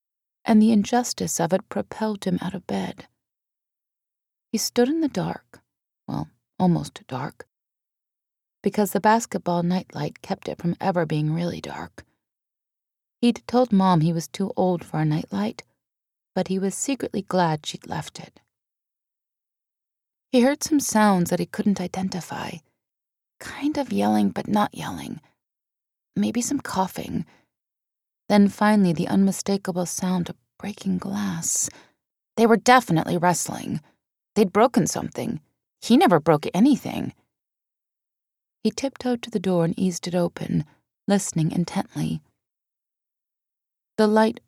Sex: female